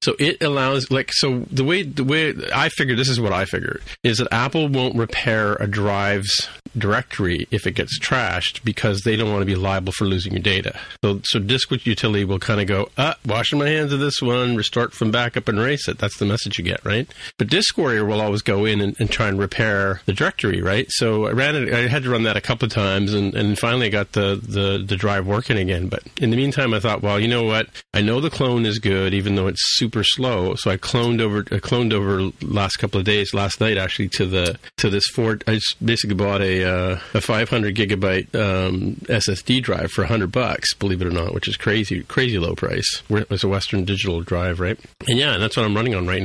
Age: 40-59